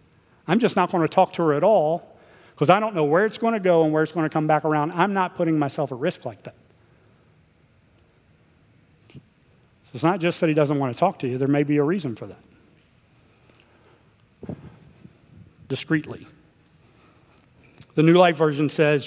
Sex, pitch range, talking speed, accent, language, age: male, 140-170 Hz, 185 wpm, American, English, 40-59